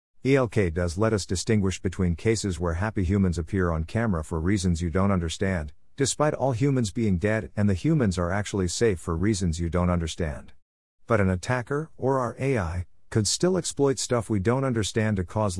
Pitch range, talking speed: 85-115 Hz, 190 wpm